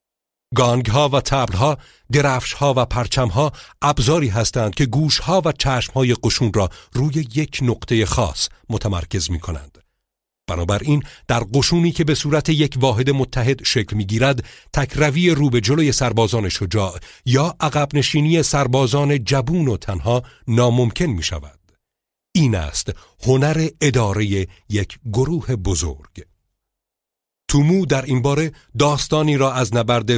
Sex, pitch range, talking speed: male, 110-145 Hz, 135 wpm